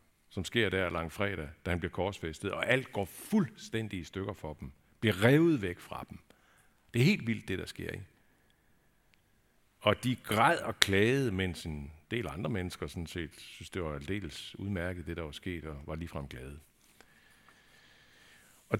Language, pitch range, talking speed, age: Danish, 80-105 Hz, 180 wpm, 60-79